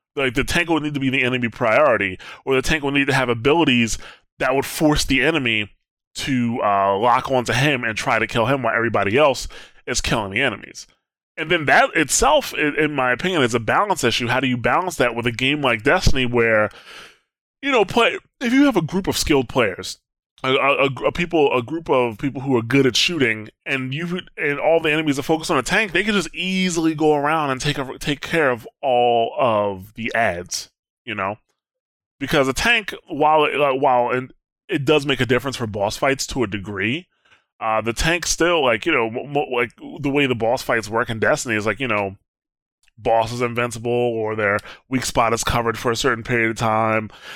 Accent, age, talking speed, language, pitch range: American, 20-39, 210 wpm, English, 115-145 Hz